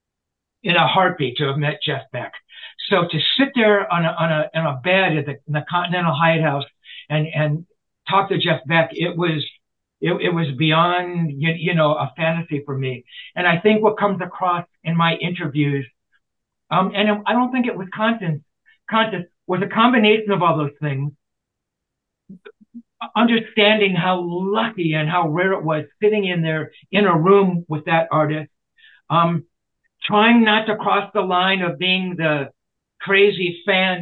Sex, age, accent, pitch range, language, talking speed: male, 60-79, American, 155-195 Hz, English, 175 wpm